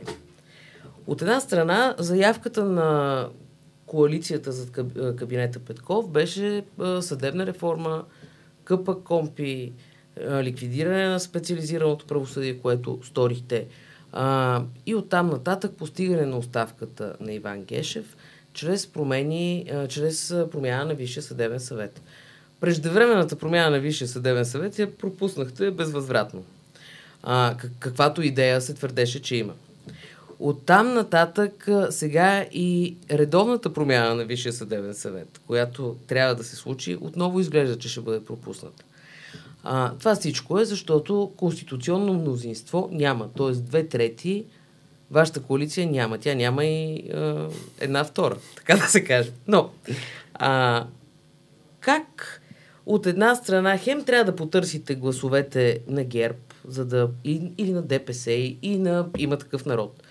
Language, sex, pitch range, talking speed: Bulgarian, female, 125-175 Hz, 120 wpm